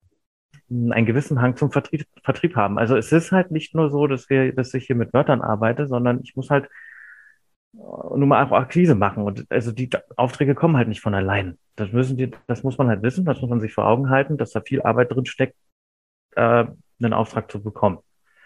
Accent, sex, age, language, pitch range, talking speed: German, male, 30-49, German, 100-130 Hz, 215 wpm